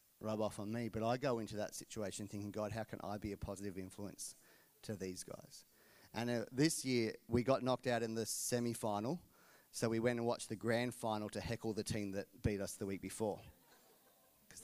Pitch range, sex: 110-135 Hz, male